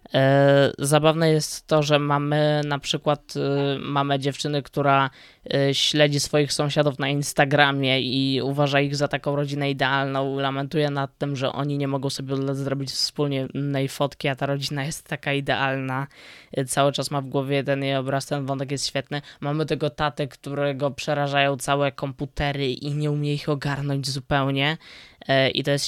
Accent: native